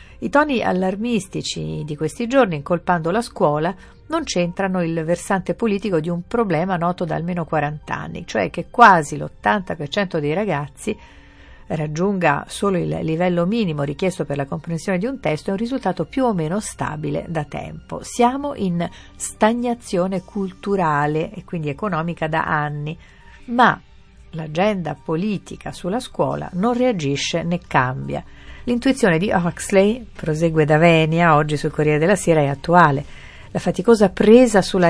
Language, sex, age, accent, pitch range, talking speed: Italian, female, 50-69, native, 155-210 Hz, 145 wpm